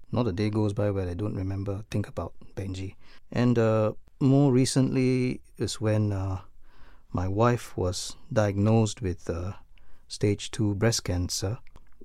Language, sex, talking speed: English, male, 155 wpm